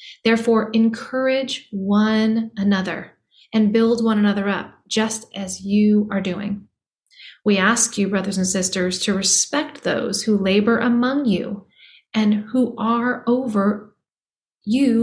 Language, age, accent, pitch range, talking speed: English, 30-49, American, 195-235 Hz, 130 wpm